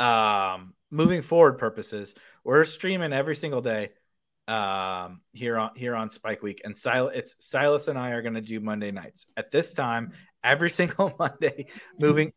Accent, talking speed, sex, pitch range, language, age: American, 165 wpm, male, 110-150 Hz, English, 30-49